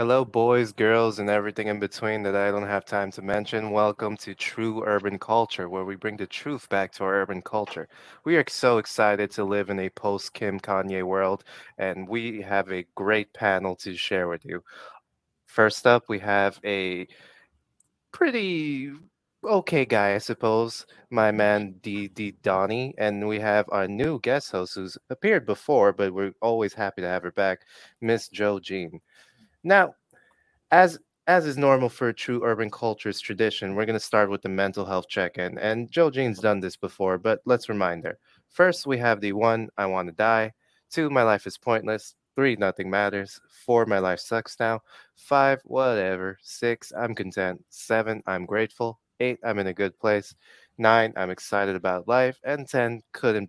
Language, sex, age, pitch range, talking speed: English, male, 20-39, 100-115 Hz, 175 wpm